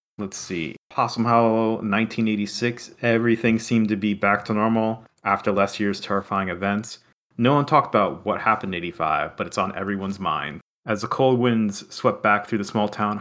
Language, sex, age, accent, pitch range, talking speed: English, male, 30-49, American, 100-115 Hz, 180 wpm